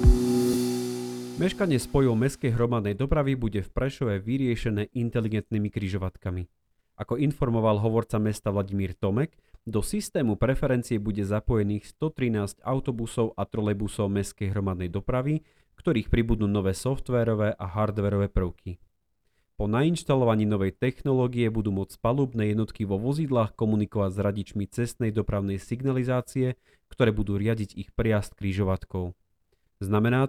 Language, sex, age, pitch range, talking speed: Slovak, male, 30-49, 100-130 Hz, 115 wpm